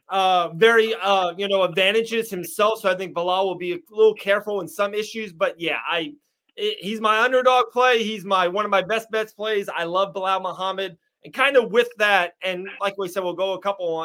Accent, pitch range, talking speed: American, 185-225 Hz, 220 wpm